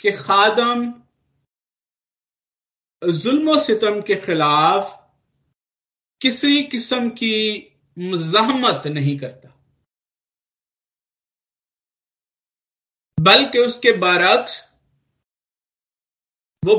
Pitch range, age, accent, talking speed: 195-265 Hz, 50-69, native, 50 wpm